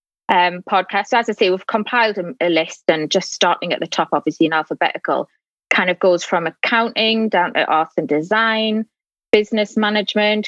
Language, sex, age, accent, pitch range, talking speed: English, female, 20-39, British, 175-210 Hz, 185 wpm